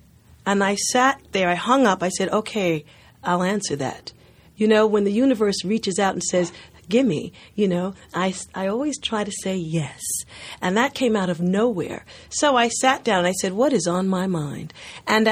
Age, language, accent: 40-59, English, American